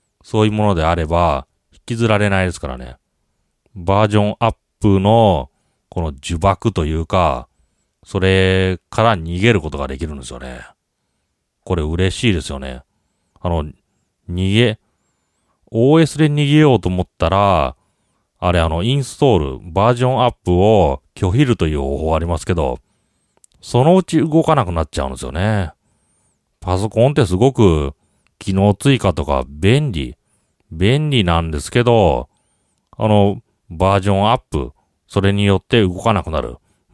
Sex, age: male, 40-59